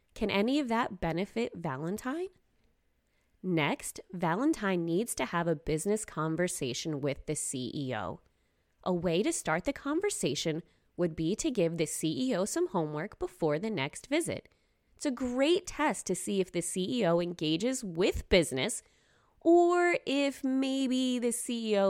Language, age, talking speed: English, 20-39, 140 wpm